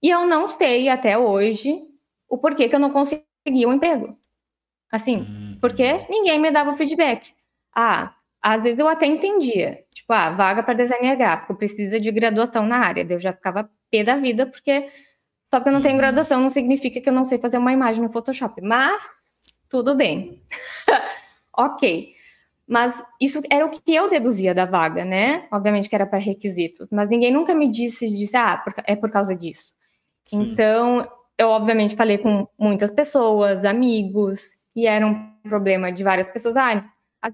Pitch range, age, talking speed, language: 210-270 Hz, 10-29, 175 wpm, Portuguese